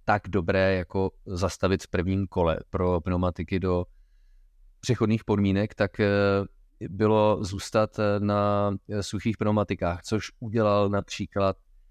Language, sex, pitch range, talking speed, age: Czech, male, 95-110 Hz, 105 wpm, 30-49